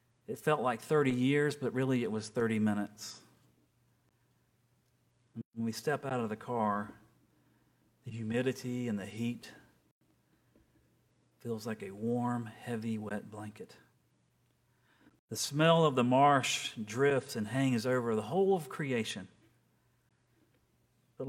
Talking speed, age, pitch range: 125 wpm, 40-59, 110-130 Hz